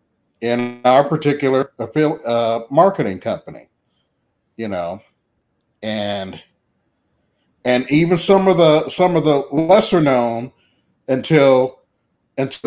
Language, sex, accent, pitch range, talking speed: English, male, American, 125-160 Hz, 100 wpm